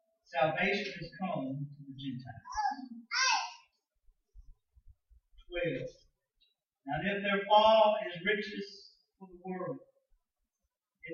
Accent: American